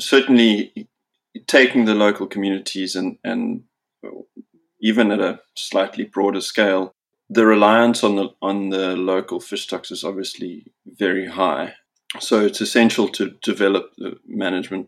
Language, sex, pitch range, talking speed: English, male, 100-115 Hz, 135 wpm